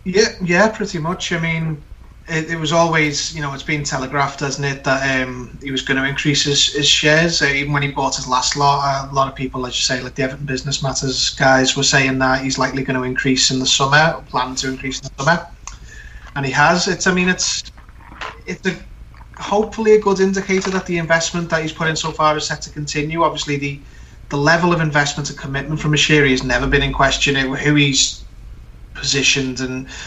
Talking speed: 225 wpm